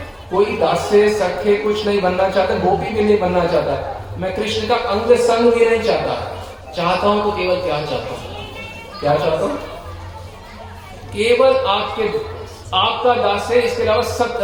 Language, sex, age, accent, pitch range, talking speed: Hindi, male, 40-59, native, 180-245 Hz, 145 wpm